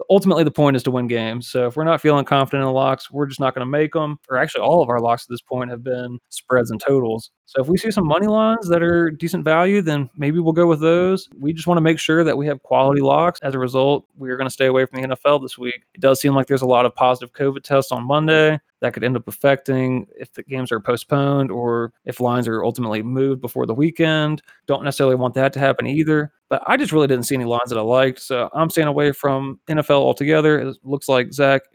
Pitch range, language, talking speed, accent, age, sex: 130-160 Hz, English, 265 wpm, American, 20-39, male